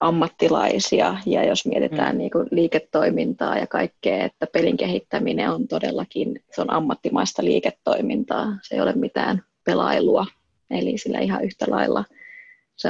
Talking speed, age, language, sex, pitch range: 135 wpm, 20-39, Finnish, female, 175-215 Hz